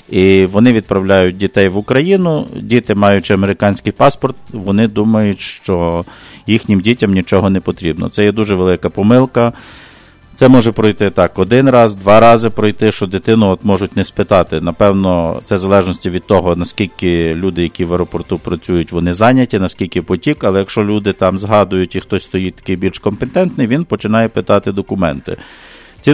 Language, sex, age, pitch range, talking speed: English, male, 50-69, 90-110 Hz, 160 wpm